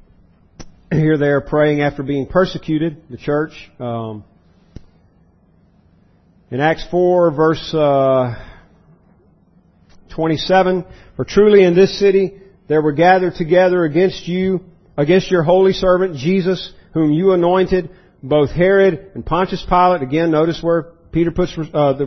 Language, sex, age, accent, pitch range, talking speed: English, male, 40-59, American, 140-185 Hz, 125 wpm